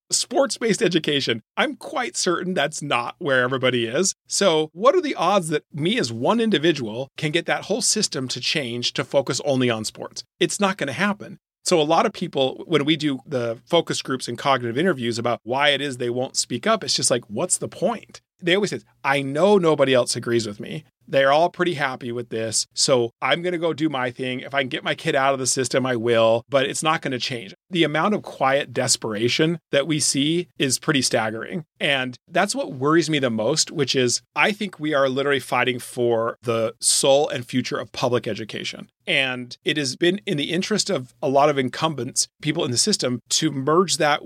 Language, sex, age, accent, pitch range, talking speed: English, male, 40-59, American, 125-175 Hz, 215 wpm